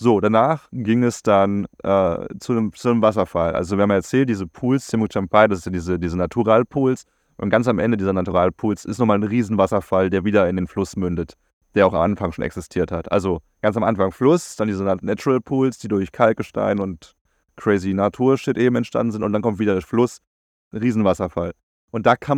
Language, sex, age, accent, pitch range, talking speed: German, male, 30-49, German, 95-125 Hz, 205 wpm